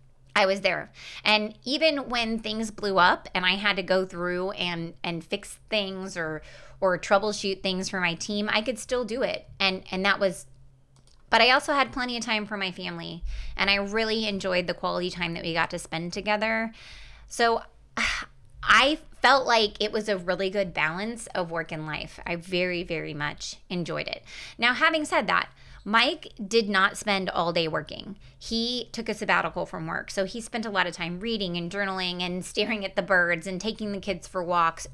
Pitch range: 170-215 Hz